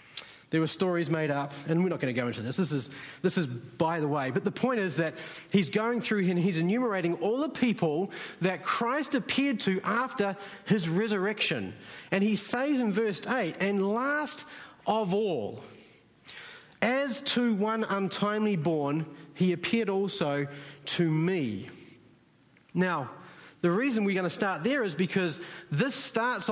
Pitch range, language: 165-220 Hz, English